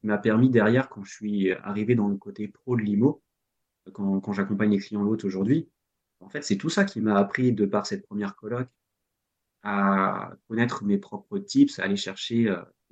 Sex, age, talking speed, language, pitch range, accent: male, 30-49, 195 wpm, French, 105-130 Hz, French